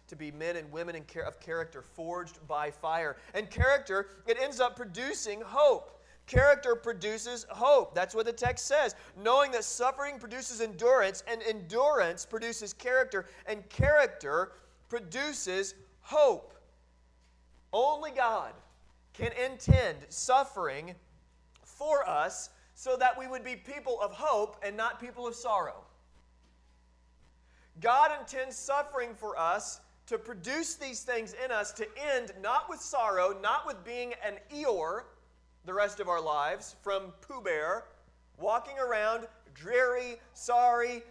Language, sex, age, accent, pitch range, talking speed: English, male, 40-59, American, 165-255 Hz, 130 wpm